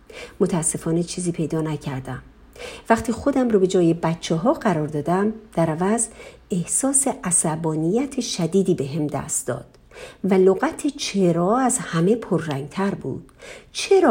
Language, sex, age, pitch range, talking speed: Persian, female, 50-69, 165-235 Hz, 125 wpm